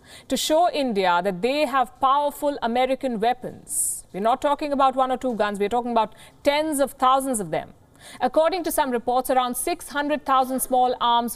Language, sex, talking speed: English, female, 175 wpm